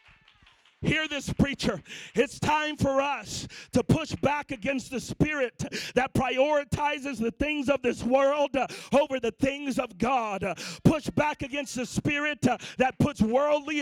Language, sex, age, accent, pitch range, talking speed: English, male, 40-59, American, 245-290 Hz, 145 wpm